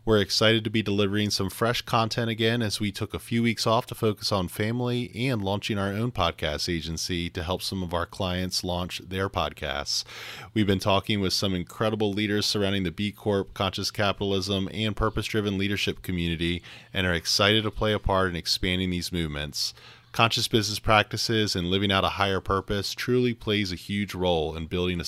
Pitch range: 85-105 Hz